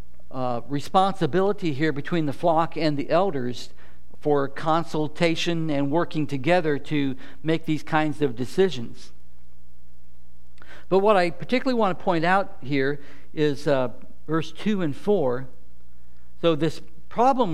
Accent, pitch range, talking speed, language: American, 125-195 Hz, 130 wpm, English